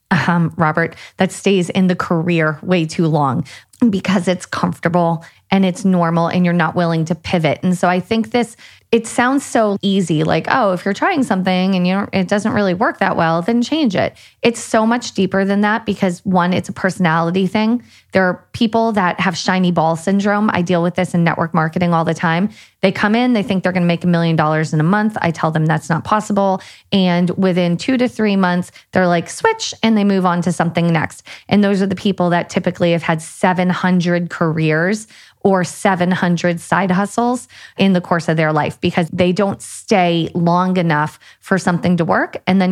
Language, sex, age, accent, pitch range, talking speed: English, female, 20-39, American, 170-200 Hz, 205 wpm